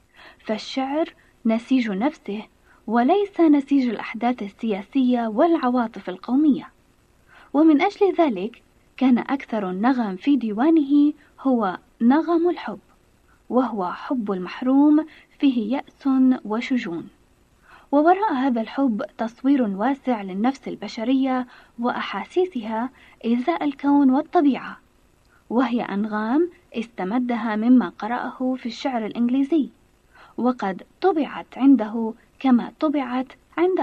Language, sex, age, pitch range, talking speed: Arabic, female, 20-39, 225-280 Hz, 90 wpm